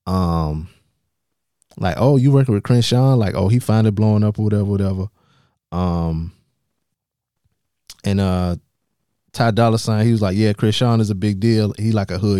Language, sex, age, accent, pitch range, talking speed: English, male, 20-39, American, 95-115 Hz, 180 wpm